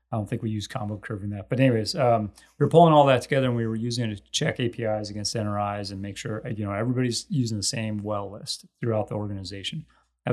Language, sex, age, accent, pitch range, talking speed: English, male, 30-49, American, 100-120 Hz, 250 wpm